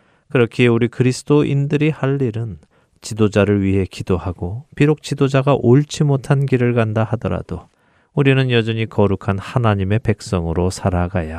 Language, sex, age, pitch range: Korean, male, 40-59, 100-130 Hz